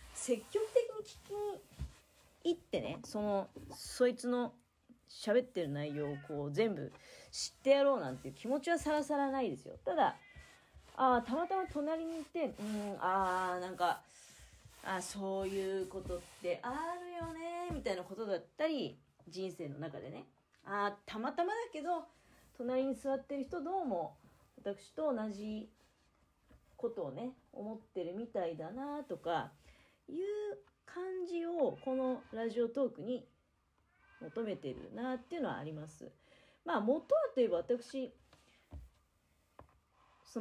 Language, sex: Japanese, female